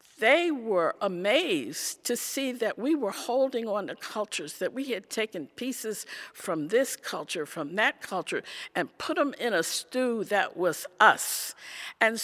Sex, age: female, 50-69